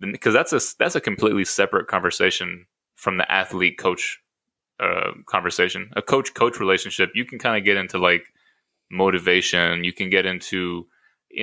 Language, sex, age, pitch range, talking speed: English, male, 20-39, 90-105 Hz, 165 wpm